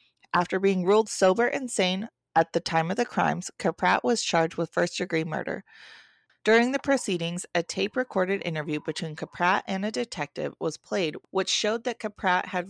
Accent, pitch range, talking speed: American, 165-205 Hz, 175 wpm